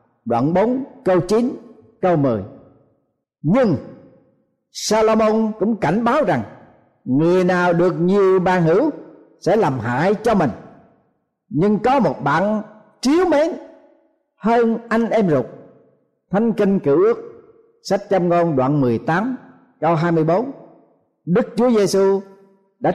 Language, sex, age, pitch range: Vietnamese, male, 50-69, 165-225 Hz